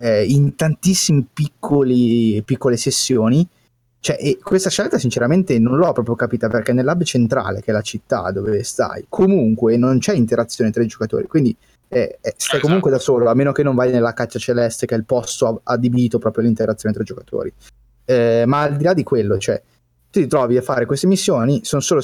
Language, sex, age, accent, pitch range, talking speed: Italian, male, 20-39, native, 115-135 Hz, 195 wpm